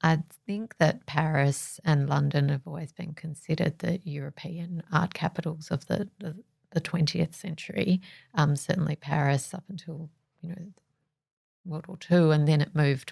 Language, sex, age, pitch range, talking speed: English, female, 40-59, 145-170 Hz, 155 wpm